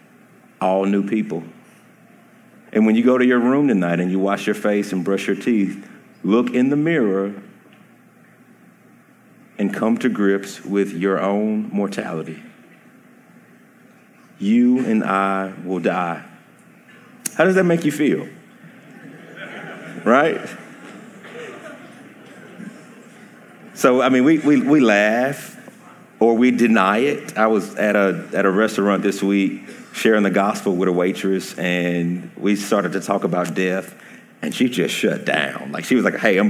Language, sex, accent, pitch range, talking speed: English, male, American, 95-130 Hz, 145 wpm